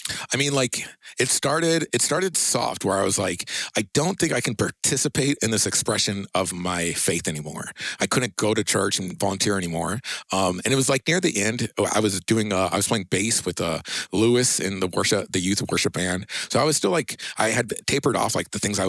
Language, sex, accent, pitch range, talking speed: English, male, American, 90-115 Hz, 230 wpm